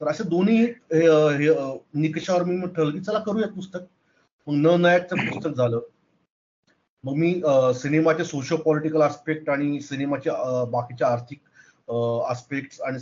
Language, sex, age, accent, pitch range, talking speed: Marathi, male, 30-49, native, 130-170 Hz, 115 wpm